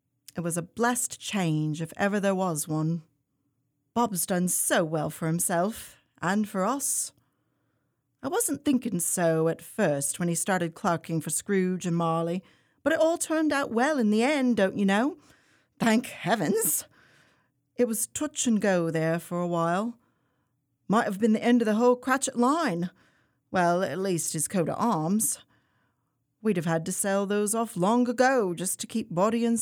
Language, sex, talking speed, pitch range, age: English, female, 175 wpm, 160-230 Hz, 40-59